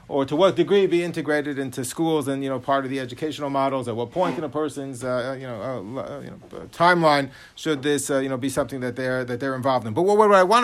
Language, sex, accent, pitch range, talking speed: English, male, American, 135-180 Hz, 275 wpm